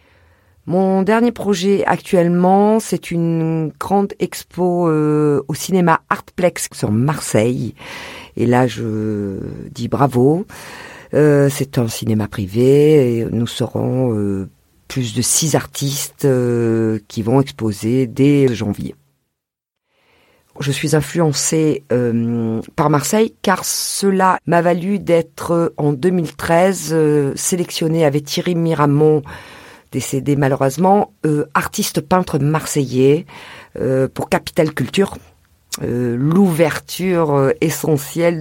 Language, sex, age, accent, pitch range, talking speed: French, female, 50-69, French, 120-165 Hz, 110 wpm